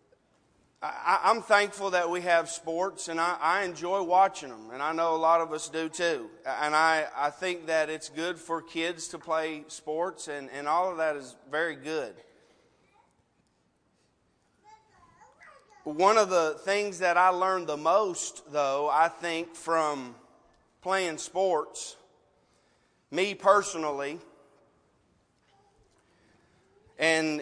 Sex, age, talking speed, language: male, 30-49, 130 wpm, English